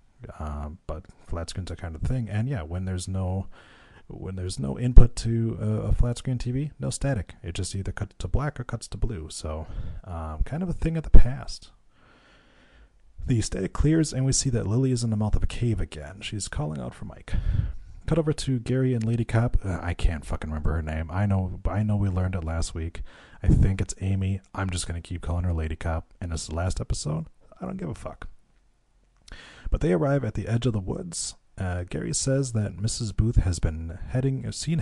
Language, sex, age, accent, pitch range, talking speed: English, male, 30-49, American, 85-115 Hz, 225 wpm